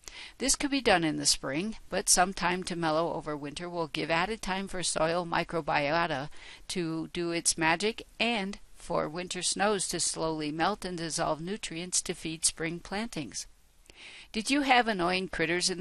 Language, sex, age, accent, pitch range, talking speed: English, female, 60-79, American, 160-200 Hz, 170 wpm